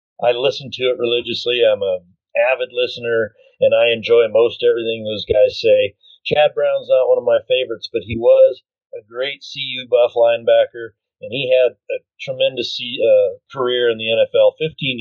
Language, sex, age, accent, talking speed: English, male, 40-59, American, 170 wpm